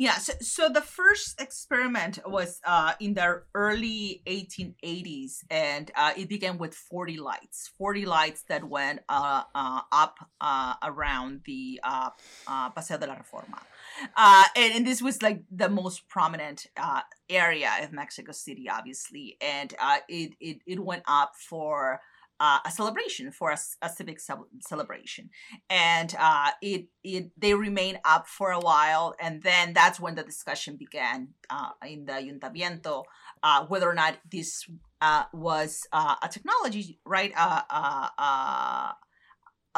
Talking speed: 155 wpm